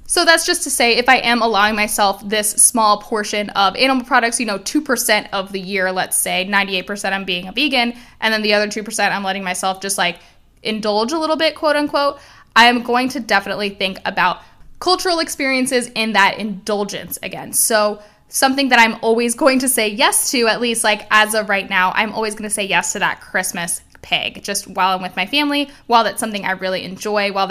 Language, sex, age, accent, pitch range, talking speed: English, female, 10-29, American, 195-250 Hz, 215 wpm